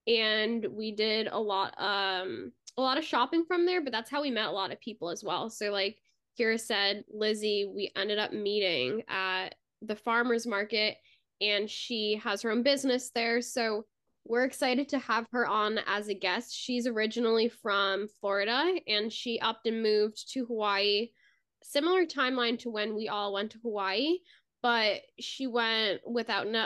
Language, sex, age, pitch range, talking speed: English, female, 10-29, 205-245 Hz, 175 wpm